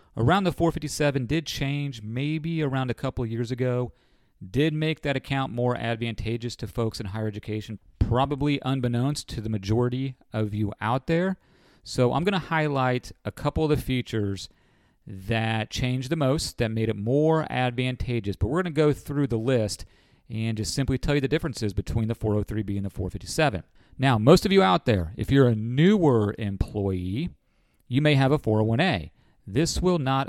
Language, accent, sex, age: English, American, male, 40-59